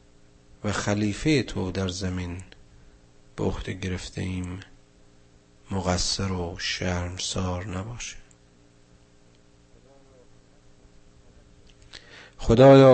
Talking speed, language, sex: 55 wpm, Persian, male